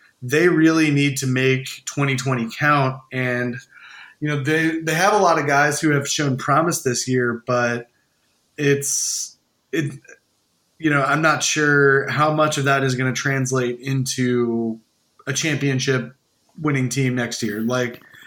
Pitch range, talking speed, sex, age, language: 125-150 Hz, 155 wpm, male, 20-39, English